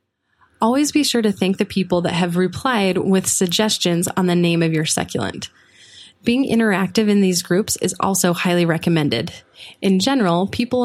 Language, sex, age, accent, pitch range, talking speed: English, female, 20-39, American, 175-220 Hz, 165 wpm